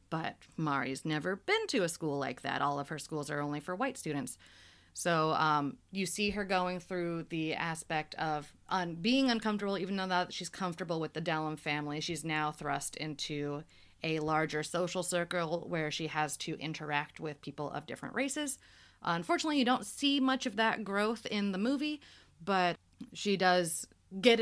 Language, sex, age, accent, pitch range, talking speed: English, female, 30-49, American, 155-205 Hz, 180 wpm